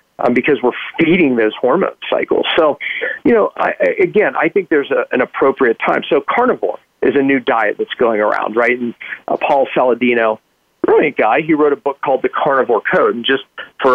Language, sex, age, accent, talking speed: English, male, 40-59, American, 190 wpm